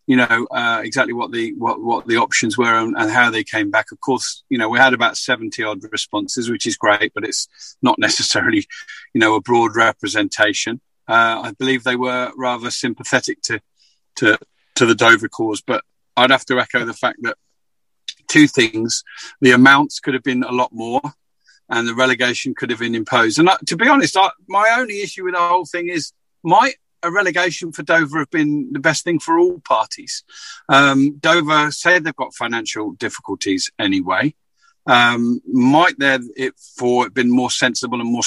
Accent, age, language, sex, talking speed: British, 40-59, English, male, 190 wpm